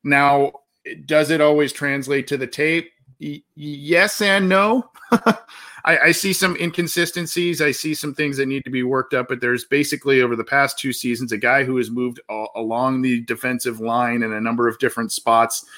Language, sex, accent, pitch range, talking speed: English, male, American, 115-145 Hz, 195 wpm